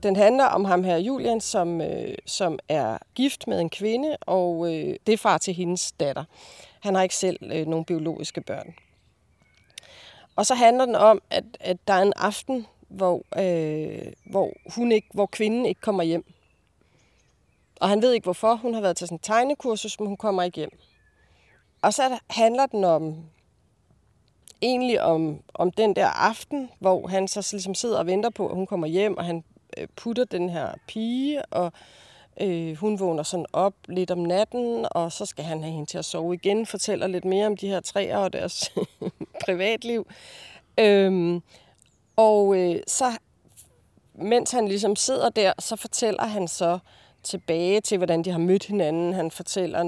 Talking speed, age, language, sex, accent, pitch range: 165 wpm, 30-49, Danish, female, native, 170-215 Hz